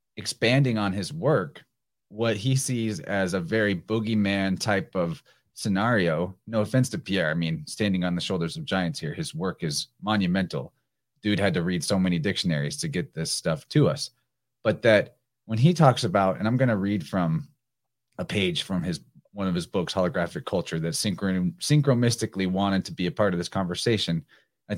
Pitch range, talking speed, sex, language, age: 95-120 Hz, 190 wpm, male, English, 30-49